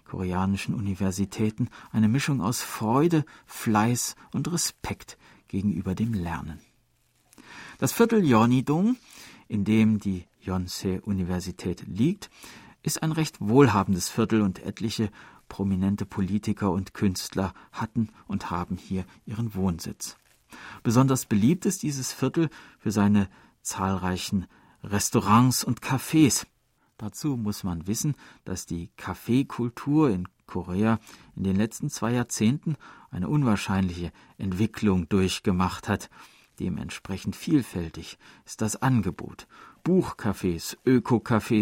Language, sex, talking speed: German, male, 105 wpm